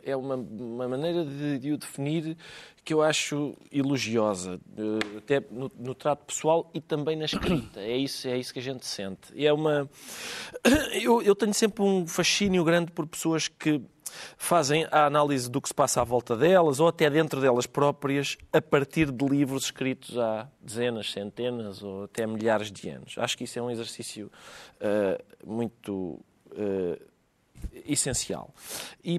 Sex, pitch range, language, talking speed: male, 120-165 Hz, Portuguese, 165 wpm